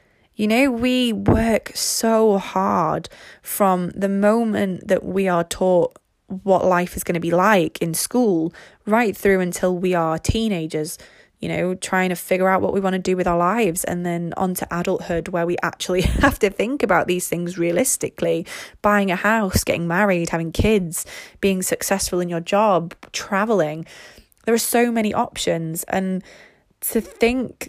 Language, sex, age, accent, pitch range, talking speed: English, female, 20-39, British, 180-215 Hz, 170 wpm